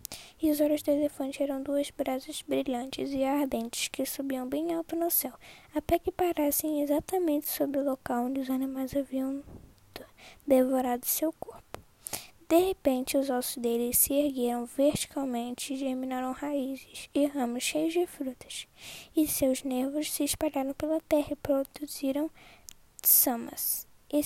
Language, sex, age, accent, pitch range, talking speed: Portuguese, female, 10-29, Brazilian, 270-310 Hz, 145 wpm